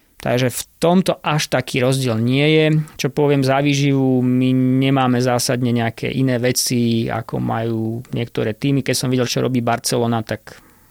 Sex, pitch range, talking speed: male, 120-140 Hz, 155 wpm